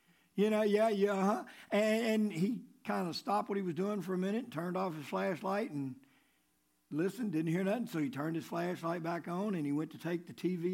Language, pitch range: English, 175-250 Hz